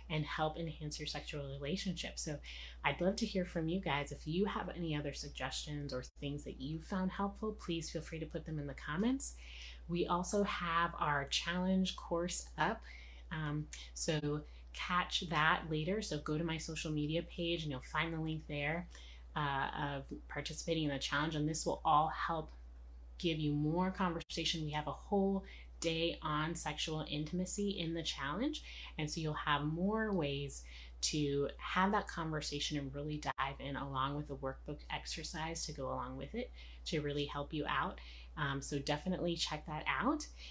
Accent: American